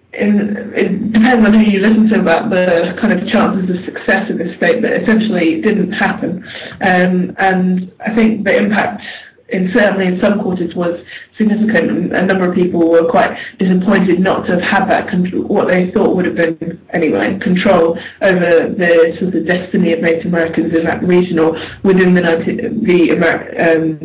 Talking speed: 190 wpm